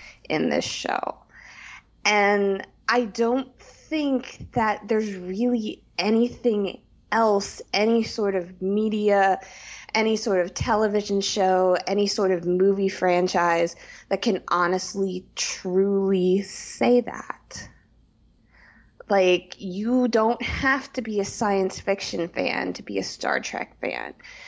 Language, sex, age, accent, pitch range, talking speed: English, female, 20-39, American, 190-235 Hz, 120 wpm